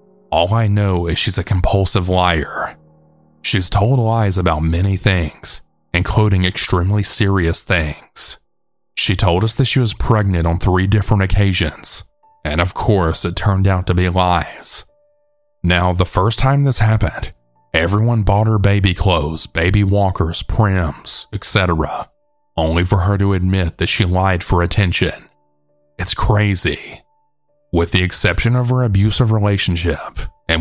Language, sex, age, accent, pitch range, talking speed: English, male, 30-49, American, 90-110 Hz, 145 wpm